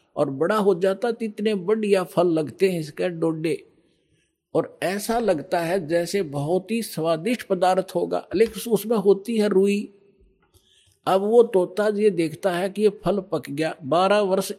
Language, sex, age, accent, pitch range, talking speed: Hindi, male, 50-69, native, 155-195 Hz, 160 wpm